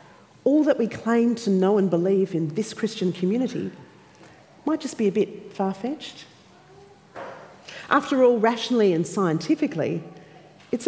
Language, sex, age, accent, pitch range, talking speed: English, female, 40-59, Australian, 175-235 Hz, 130 wpm